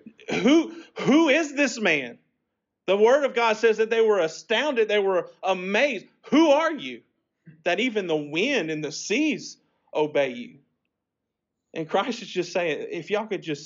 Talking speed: 165 wpm